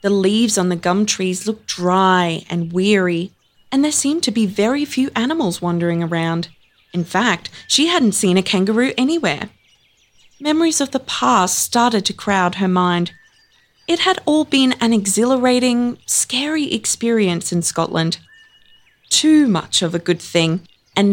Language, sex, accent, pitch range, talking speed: English, female, Australian, 185-255 Hz, 155 wpm